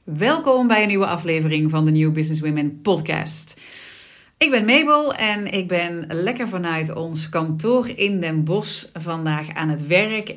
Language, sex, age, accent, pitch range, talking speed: Dutch, female, 40-59, Dutch, 160-230 Hz, 160 wpm